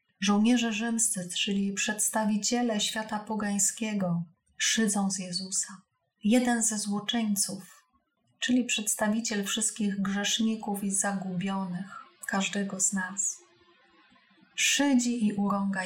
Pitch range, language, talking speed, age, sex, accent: 195-225 Hz, Polish, 90 wpm, 30-49, female, native